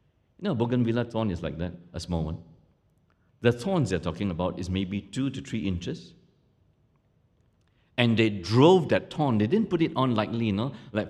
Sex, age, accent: male, 60-79, Malaysian